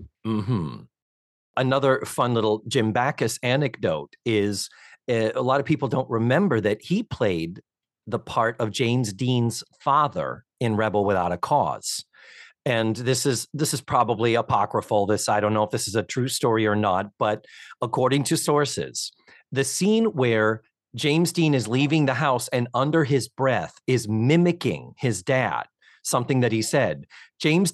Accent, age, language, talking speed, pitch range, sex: American, 40-59, English, 160 wpm, 115-145 Hz, male